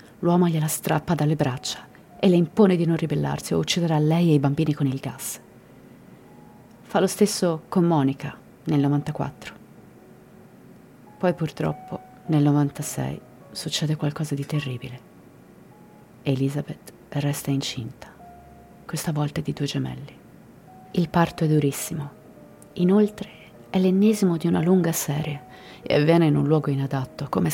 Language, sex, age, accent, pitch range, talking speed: Italian, female, 40-59, native, 140-175 Hz, 135 wpm